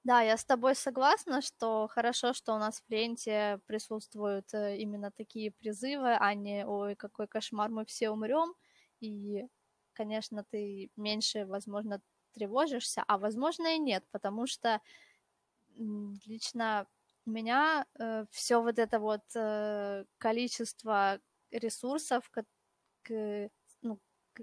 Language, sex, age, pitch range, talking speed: Russian, female, 20-39, 210-240 Hz, 115 wpm